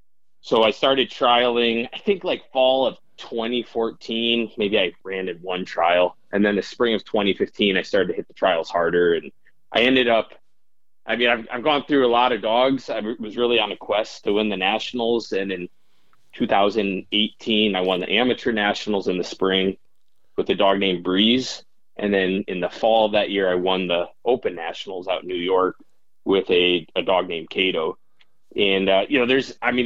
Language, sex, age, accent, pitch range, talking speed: English, male, 20-39, American, 95-120 Hz, 200 wpm